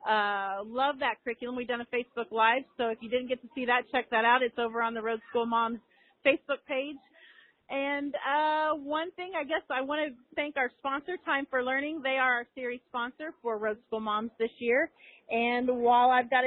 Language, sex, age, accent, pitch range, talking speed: English, female, 30-49, American, 225-295 Hz, 215 wpm